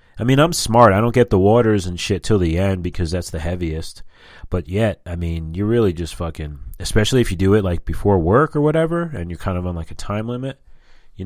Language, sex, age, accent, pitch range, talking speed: English, male, 30-49, American, 80-100 Hz, 245 wpm